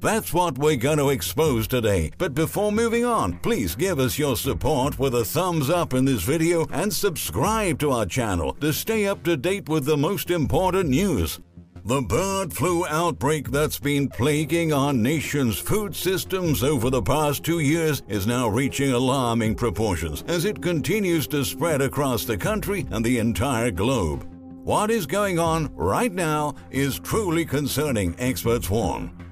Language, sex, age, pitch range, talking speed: English, male, 60-79, 120-160 Hz, 170 wpm